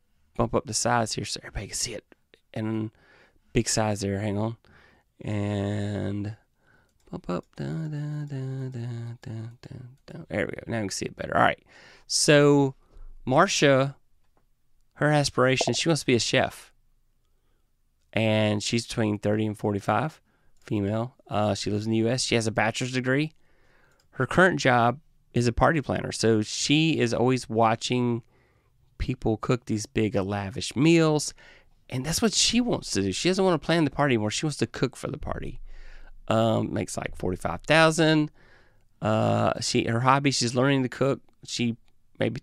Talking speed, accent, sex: 170 wpm, American, male